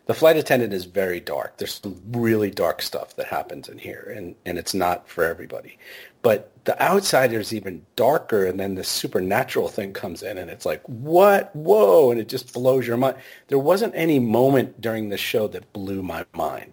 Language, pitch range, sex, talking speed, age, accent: English, 100-130 Hz, male, 200 wpm, 40-59, American